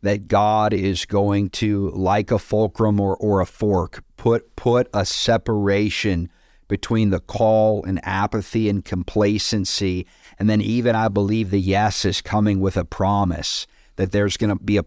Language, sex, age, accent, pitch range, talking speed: English, male, 50-69, American, 95-110 Hz, 165 wpm